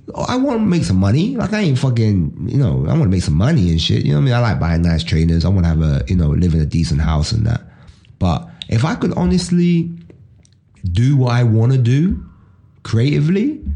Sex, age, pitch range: male, 30-49, 85-120 Hz